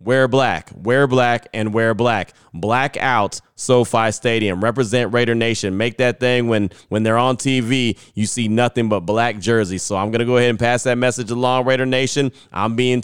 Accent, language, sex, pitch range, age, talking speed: American, English, male, 105-125 Hz, 30-49, 200 wpm